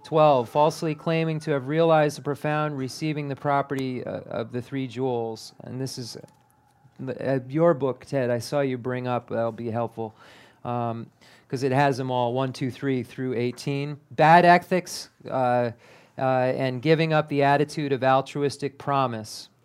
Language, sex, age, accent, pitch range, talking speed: English, male, 40-59, American, 115-145 Hz, 170 wpm